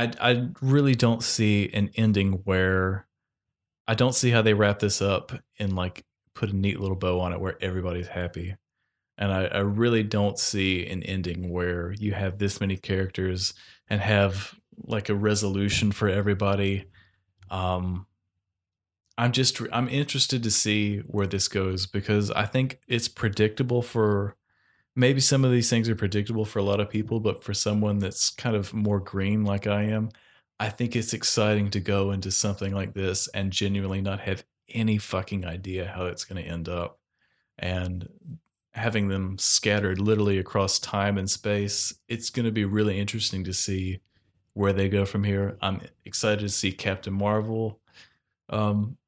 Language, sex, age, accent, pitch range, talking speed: English, male, 20-39, American, 95-110 Hz, 170 wpm